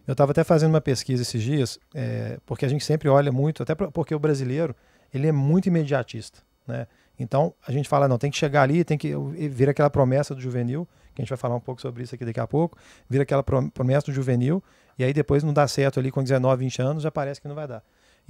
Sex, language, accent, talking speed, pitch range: male, Portuguese, Brazilian, 245 wpm, 130-155 Hz